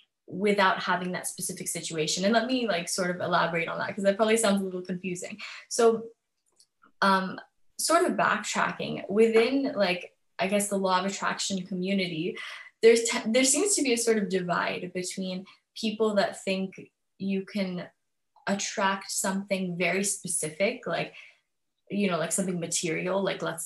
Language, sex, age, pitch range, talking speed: English, female, 10-29, 180-205 Hz, 155 wpm